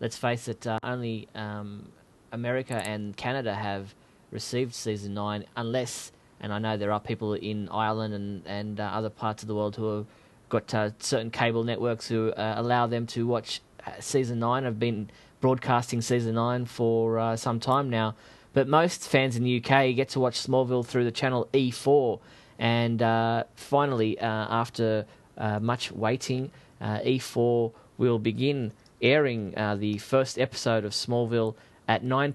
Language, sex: English, male